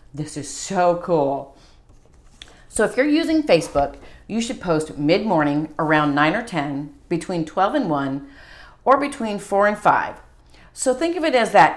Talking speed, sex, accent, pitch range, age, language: 165 wpm, female, American, 150-205 Hz, 40-59, English